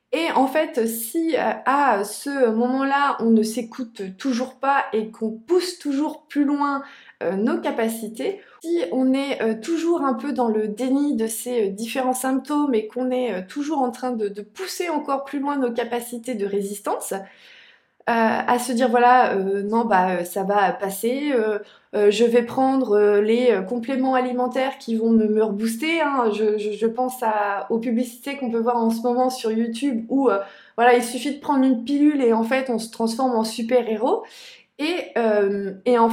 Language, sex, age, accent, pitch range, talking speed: French, female, 20-39, French, 210-265 Hz, 185 wpm